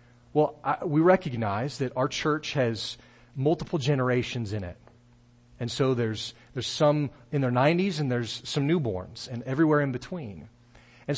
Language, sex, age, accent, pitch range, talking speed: English, male, 40-59, American, 120-150 Hz, 155 wpm